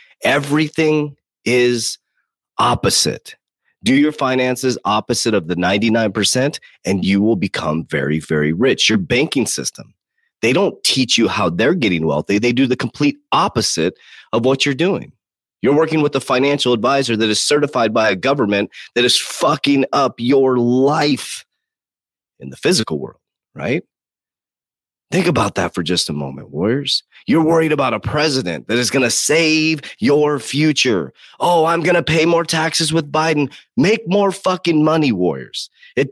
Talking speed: 160 wpm